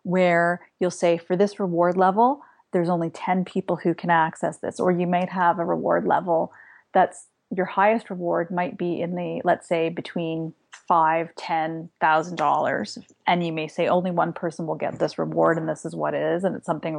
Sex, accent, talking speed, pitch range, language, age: female, American, 200 wpm, 170-195 Hz, English, 30-49